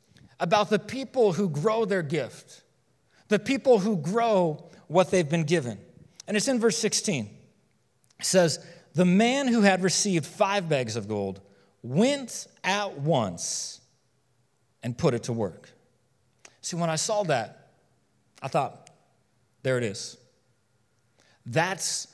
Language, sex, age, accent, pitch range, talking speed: English, male, 40-59, American, 130-180 Hz, 135 wpm